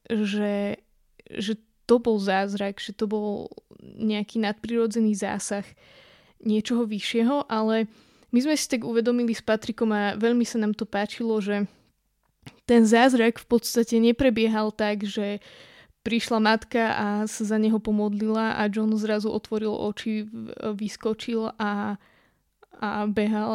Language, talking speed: Slovak, 130 wpm